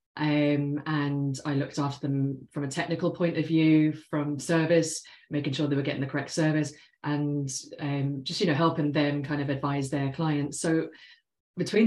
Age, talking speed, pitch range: 30-49, 180 wpm, 145-165 Hz